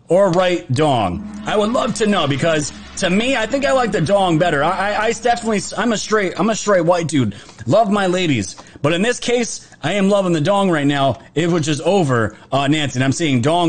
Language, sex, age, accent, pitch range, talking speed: English, male, 30-49, American, 140-195 Hz, 235 wpm